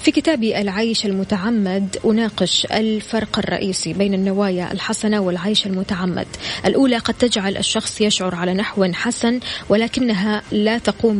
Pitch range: 200-240 Hz